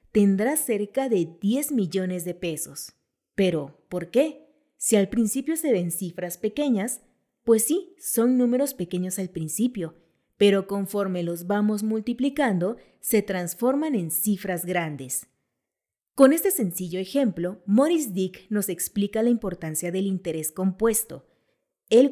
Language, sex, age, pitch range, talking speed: Spanish, female, 30-49, 180-240 Hz, 130 wpm